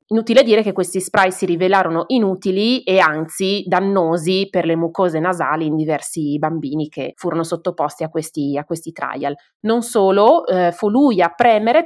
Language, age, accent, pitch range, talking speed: Italian, 30-49, native, 170-225 Hz, 160 wpm